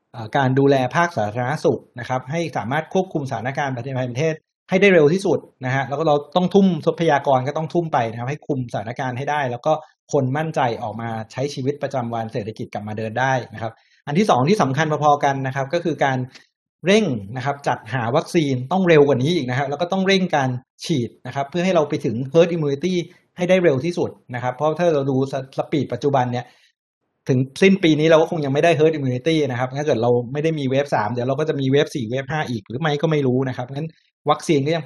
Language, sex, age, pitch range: Thai, male, 60-79, 125-160 Hz